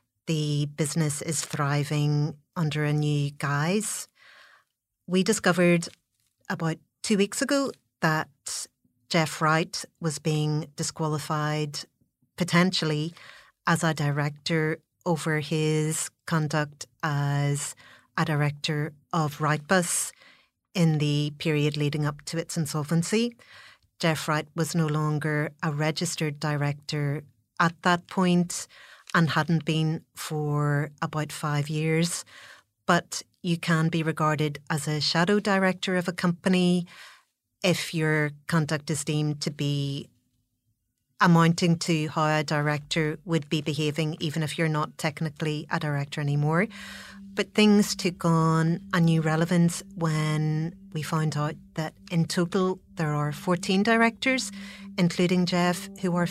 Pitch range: 150-180 Hz